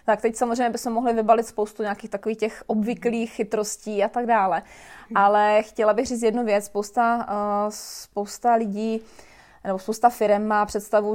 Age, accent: 20-39, native